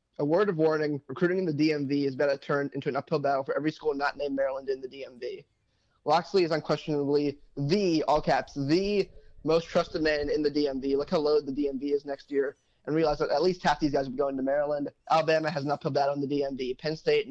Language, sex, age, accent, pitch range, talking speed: English, male, 20-39, American, 140-160 Hz, 235 wpm